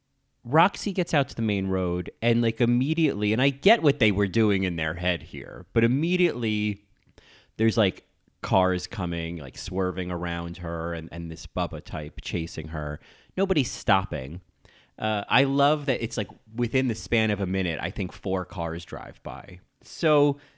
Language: English